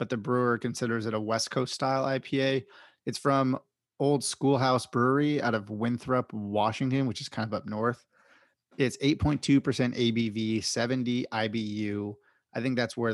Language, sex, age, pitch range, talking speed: English, male, 30-49, 110-130 Hz, 155 wpm